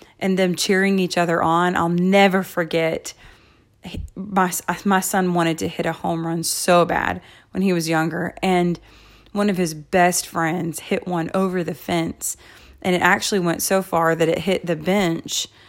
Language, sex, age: English, female, 30-49